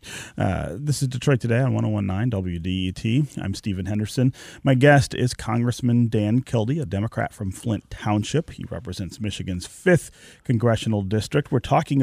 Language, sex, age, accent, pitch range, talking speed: English, male, 30-49, American, 100-135 Hz, 150 wpm